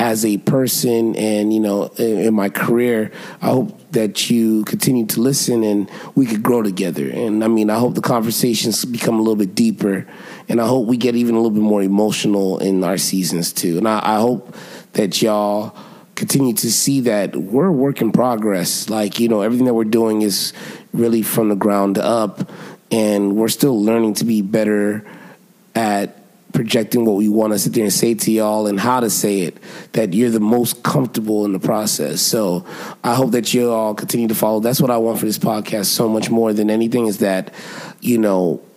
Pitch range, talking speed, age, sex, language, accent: 105-120 Hz, 205 wpm, 30-49, male, English, American